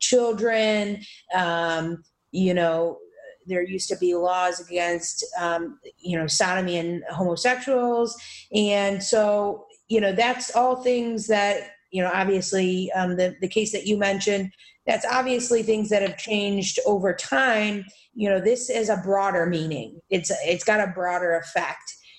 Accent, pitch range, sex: American, 175-210 Hz, female